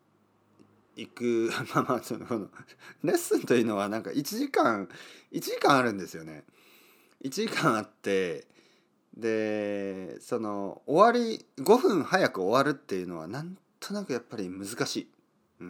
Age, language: 40-59, Japanese